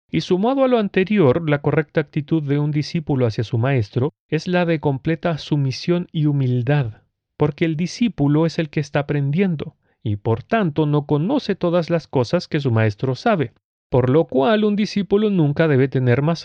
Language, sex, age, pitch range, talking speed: Spanish, male, 40-59, 130-175 Hz, 180 wpm